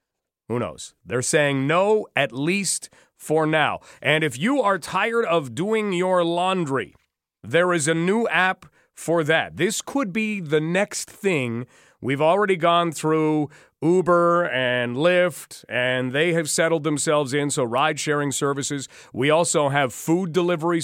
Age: 40-59